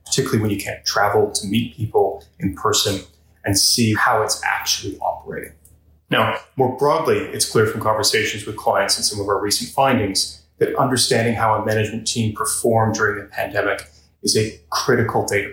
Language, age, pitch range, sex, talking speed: English, 30-49, 100-120 Hz, male, 175 wpm